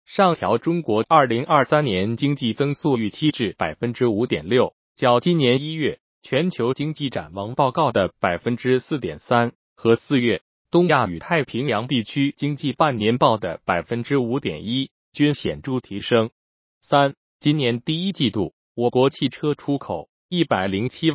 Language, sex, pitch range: Chinese, male, 115-150 Hz